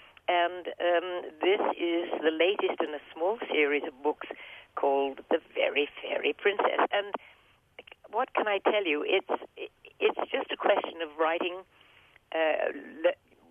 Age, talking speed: 50-69, 140 wpm